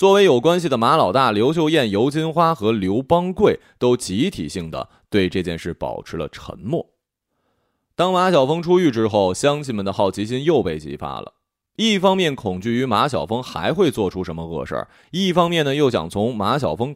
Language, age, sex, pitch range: Chinese, 20-39, male, 95-145 Hz